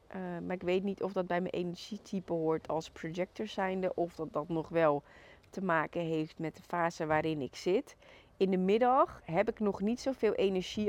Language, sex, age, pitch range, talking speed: Dutch, female, 30-49, 155-180 Hz, 205 wpm